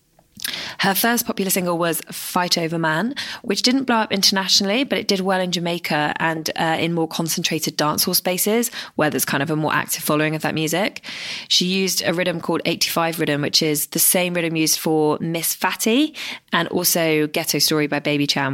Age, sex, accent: 20-39, female, British